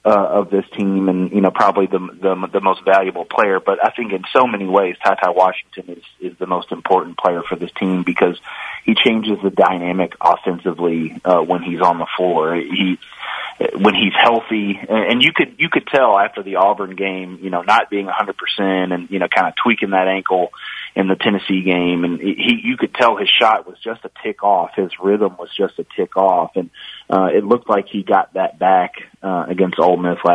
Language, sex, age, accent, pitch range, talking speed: English, male, 30-49, American, 90-100 Hz, 215 wpm